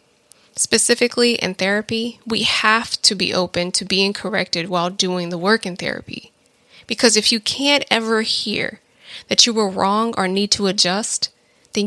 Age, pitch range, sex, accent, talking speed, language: 20-39, 185-220 Hz, female, American, 160 wpm, English